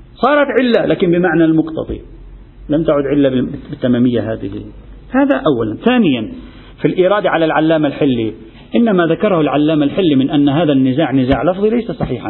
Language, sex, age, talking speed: Arabic, male, 40-59, 145 wpm